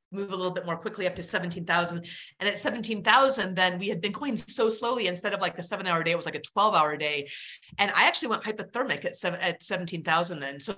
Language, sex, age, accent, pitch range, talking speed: English, female, 30-49, American, 180-260 Hz, 235 wpm